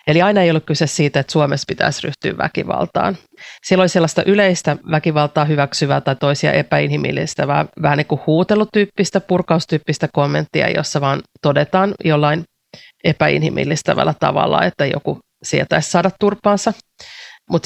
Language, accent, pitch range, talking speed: Finnish, native, 145-175 Hz, 130 wpm